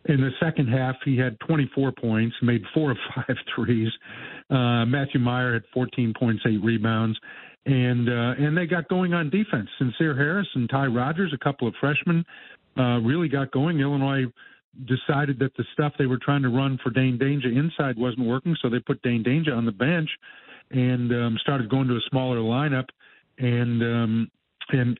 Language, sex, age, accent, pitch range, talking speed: English, male, 50-69, American, 115-140 Hz, 185 wpm